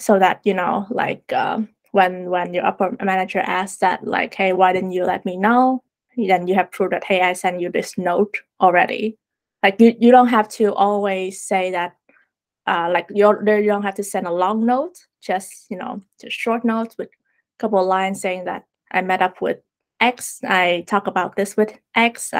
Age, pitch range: 20-39, 185-225 Hz